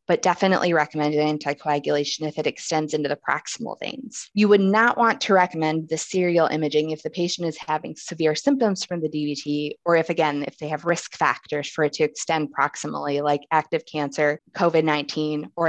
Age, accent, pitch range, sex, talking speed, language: 20-39, American, 150-200 Hz, female, 185 wpm, English